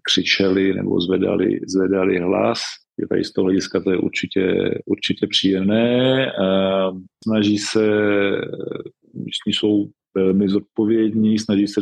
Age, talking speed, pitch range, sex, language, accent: 40-59, 110 wpm, 100-110 Hz, male, Czech, native